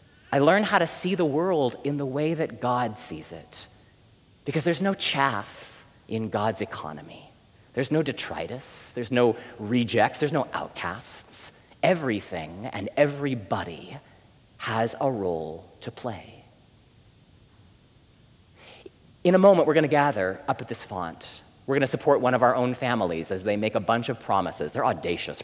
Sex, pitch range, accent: male, 105-155 Hz, American